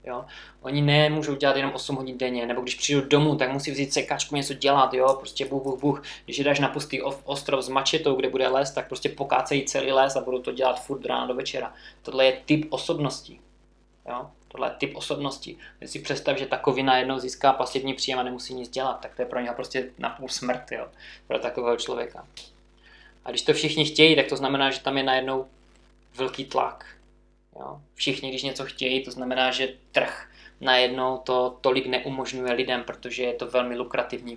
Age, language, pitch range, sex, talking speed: 20-39, Czech, 125-135 Hz, male, 190 wpm